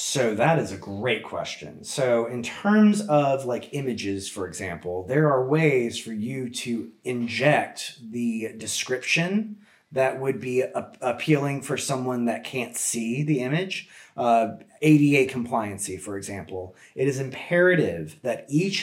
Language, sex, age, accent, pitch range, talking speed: English, male, 30-49, American, 120-155 Hz, 140 wpm